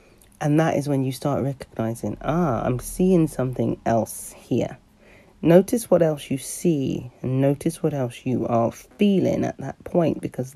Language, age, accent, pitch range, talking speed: English, 40-59, British, 140-215 Hz, 165 wpm